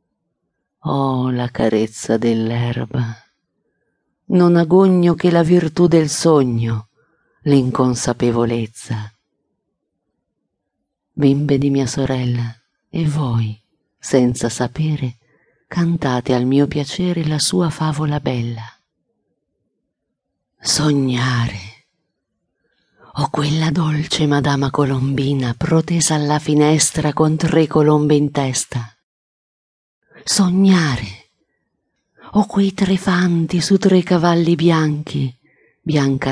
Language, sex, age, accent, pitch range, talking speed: Italian, female, 50-69, native, 125-160 Hz, 85 wpm